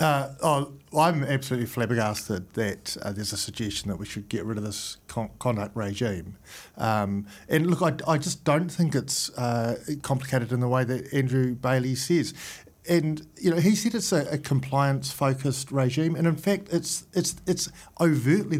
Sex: male